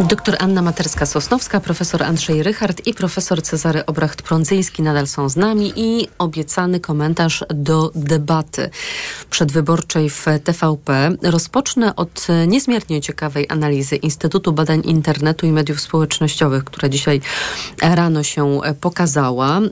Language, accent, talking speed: Polish, native, 120 wpm